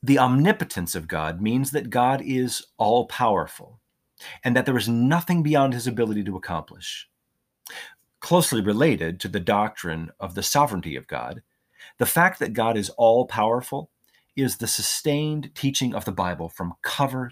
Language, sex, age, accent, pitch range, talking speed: English, male, 30-49, American, 100-125 Hz, 150 wpm